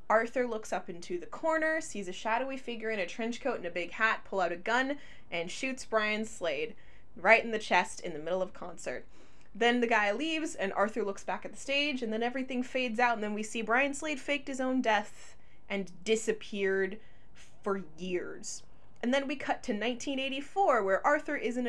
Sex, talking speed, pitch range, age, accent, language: female, 210 wpm, 215-285 Hz, 20-39, American, English